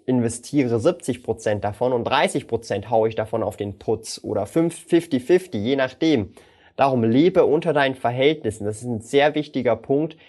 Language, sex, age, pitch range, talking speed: German, male, 20-39, 120-150 Hz, 150 wpm